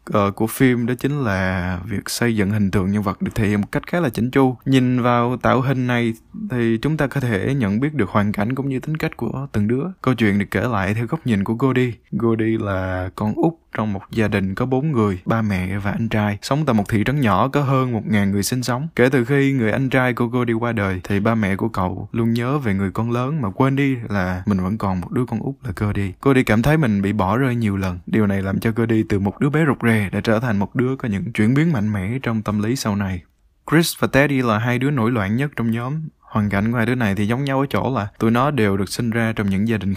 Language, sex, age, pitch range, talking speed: Vietnamese, male, 20-39, 105-130 Hz, 280 wpm